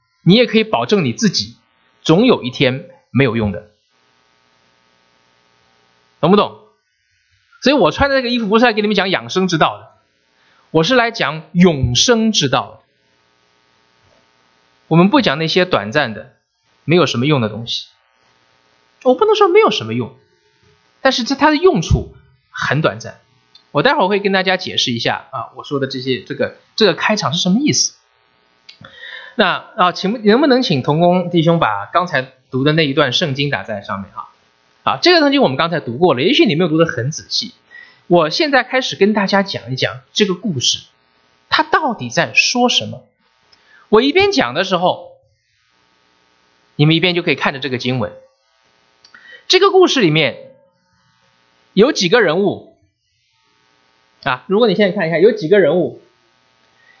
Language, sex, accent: English, male, Chinese